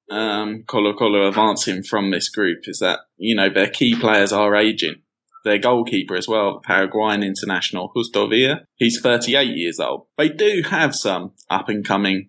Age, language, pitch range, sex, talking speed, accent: 20-39, English, 105-120 Hz, male, 165 wpm, British